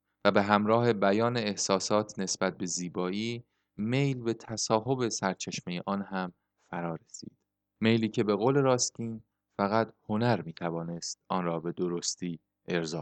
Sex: male